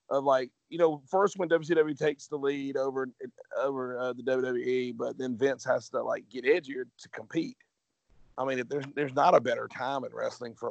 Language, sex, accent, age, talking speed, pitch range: English, male, American, 40-59, 205 wpm, 125-155 Hz